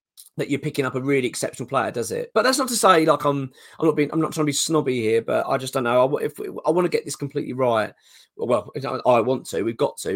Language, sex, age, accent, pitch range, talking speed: English, male, 20-39, British, 120-165 Hz, 285 wpm